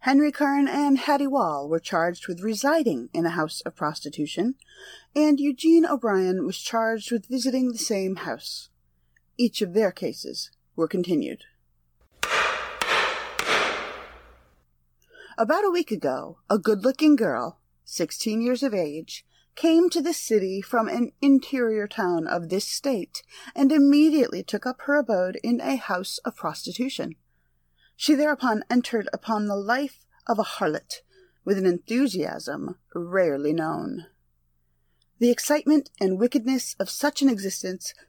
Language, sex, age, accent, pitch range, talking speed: English, female, 30-49, American, 175-275 Hz, 135 wpm